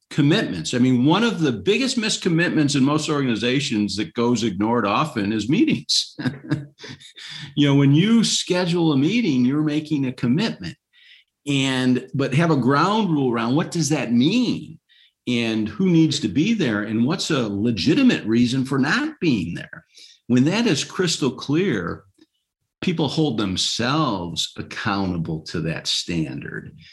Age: 50-69